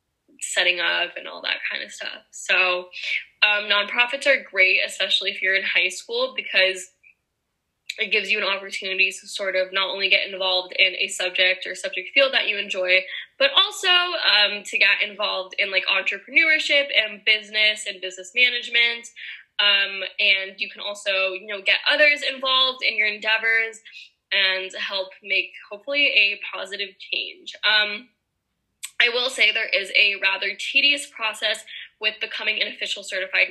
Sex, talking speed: female, 160 wpm